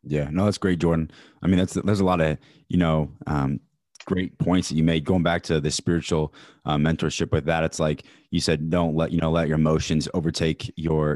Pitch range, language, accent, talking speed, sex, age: 80-85 Hz, English, American, 225 wpm, male, 20-39